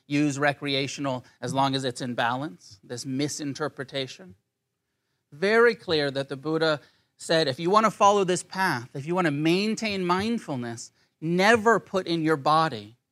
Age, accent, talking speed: 30-49, American, 155 wpm